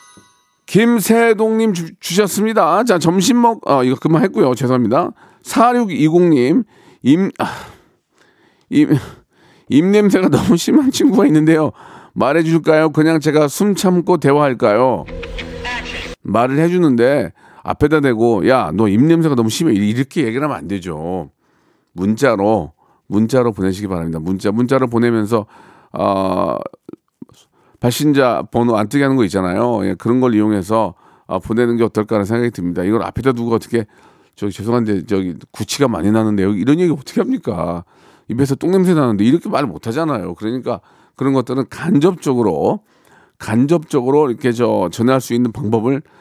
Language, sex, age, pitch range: Korean, male, 40-59, 105-160 Hz